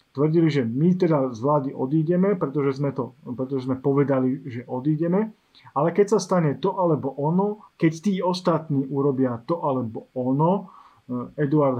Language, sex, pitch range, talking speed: Slovak, male, 135-160 Hz, 155 wpm